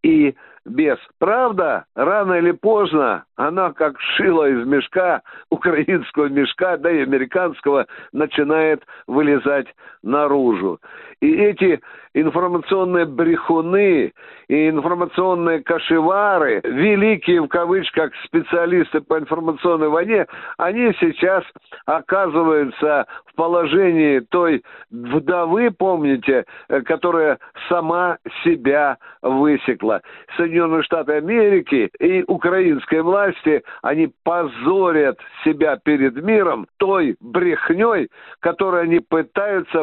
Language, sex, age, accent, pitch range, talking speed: Russian, male, 60-79, native, 150-195 Hz, 90 wpm